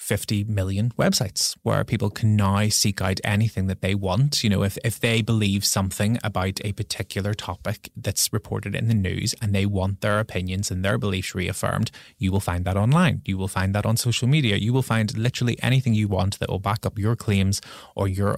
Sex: male